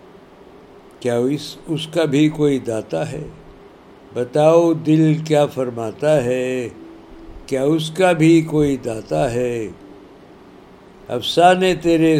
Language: Urdu